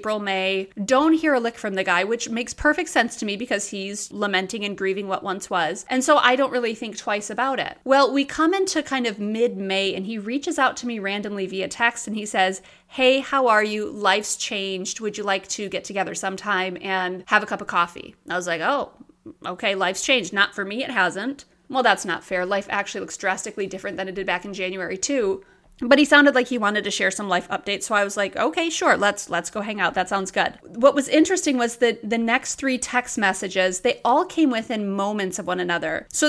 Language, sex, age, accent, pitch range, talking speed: English, female, 30-49, American, 200-260 Hz, 235 wpm